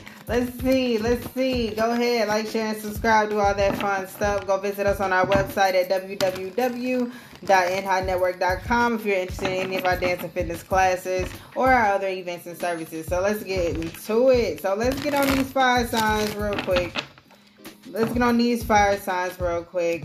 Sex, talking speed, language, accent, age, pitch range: female, 185 wpm, English, American, 20-39, 190-235 Hz